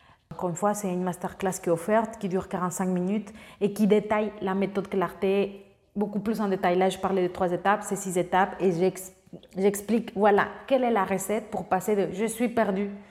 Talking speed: 210 wpm